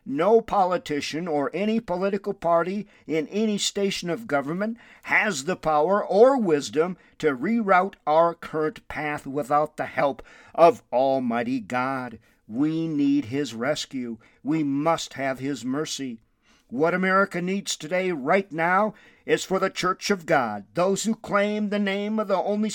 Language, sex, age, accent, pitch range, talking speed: English, male, 50-69, American, 135-195 Hz, 150 wpm